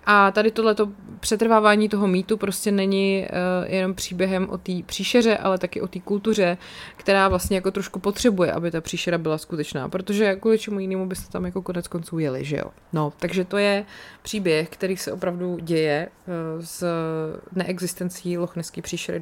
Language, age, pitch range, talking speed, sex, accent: Czech, 20-39, 160-200 Hz, 170 wpm, female, native